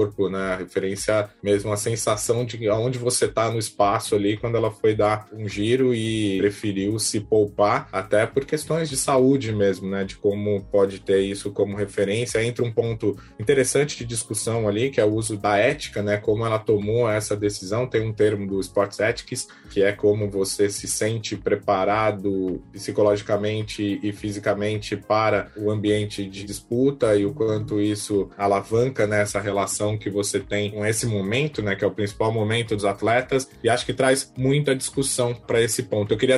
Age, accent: 20-39, Brazilian